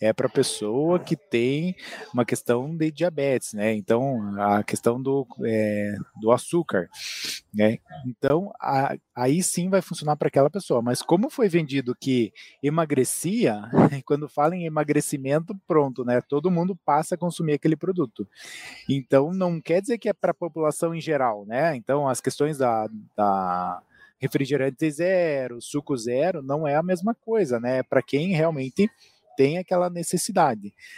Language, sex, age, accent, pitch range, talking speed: Portuguese, male, 20-39, Brazilian, 125-170 Hz, 150 wpm